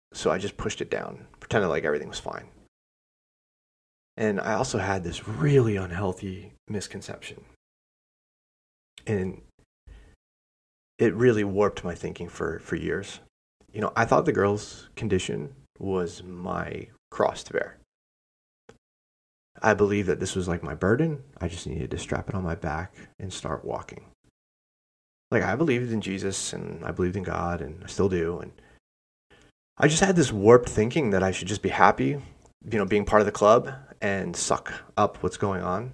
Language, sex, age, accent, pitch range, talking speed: English, male, 30-49, American, 80-105 Hz, 165 wpm